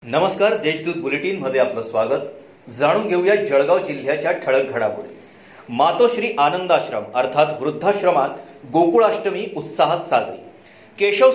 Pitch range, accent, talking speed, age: 165-215 Hz, native, 60 wpm, 40-59